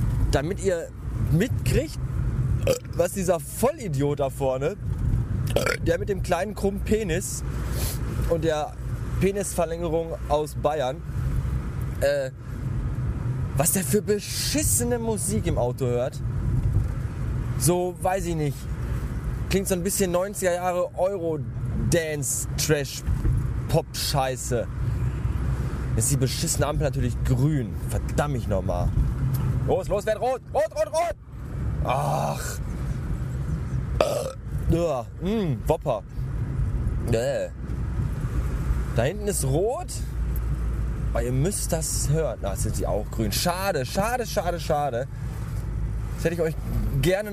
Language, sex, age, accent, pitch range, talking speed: German, male, 20-39, German, 120-165 Hz, 105 wpm